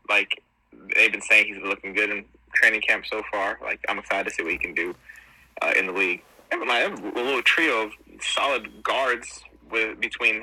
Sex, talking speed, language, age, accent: male, 205 wpm, English, 20-39, American